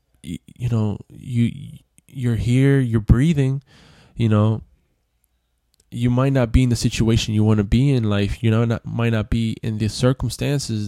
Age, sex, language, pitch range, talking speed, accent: 10-29, male, English, 100-115 Hz, 170 wpm, American